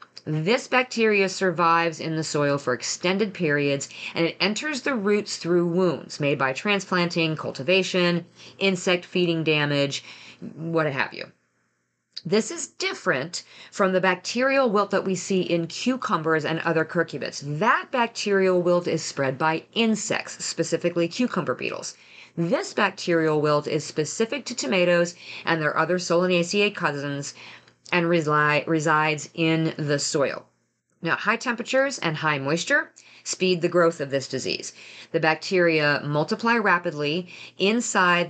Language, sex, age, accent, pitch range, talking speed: English, female, 40-59, American, 155-200 Hz, 135 wpm